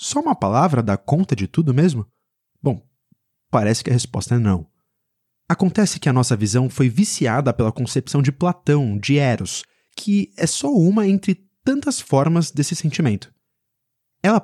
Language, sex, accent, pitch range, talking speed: Portuguese, male, Brazilian, 120-175 Hz, 160 wpm